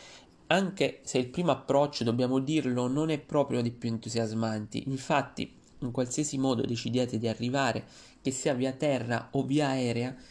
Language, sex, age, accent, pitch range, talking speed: Italian, male, 30-49, native, 125-145 Hz, 155 wpm